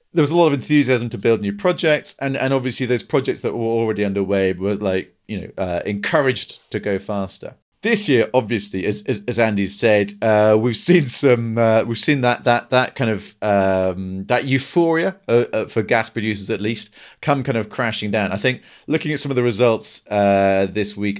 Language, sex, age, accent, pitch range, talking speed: English, male, 40-59, British, 95-135 Hz, 205 wpm